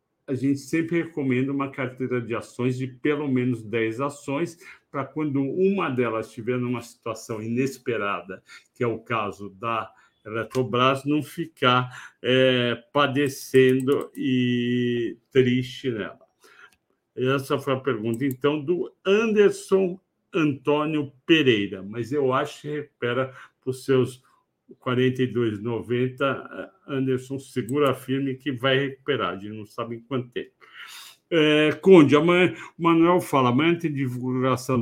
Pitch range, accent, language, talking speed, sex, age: 125-145 Hz, Brazilian, Portuguese, 130 wpm, male, 60-79